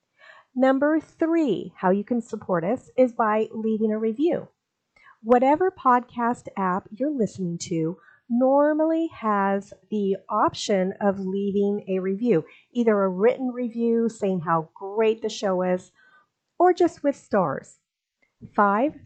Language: English